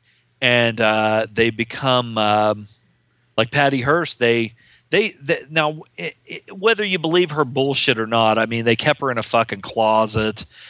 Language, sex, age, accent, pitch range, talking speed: English, male, 40-59, American, 110-130 Hz, 170 wpm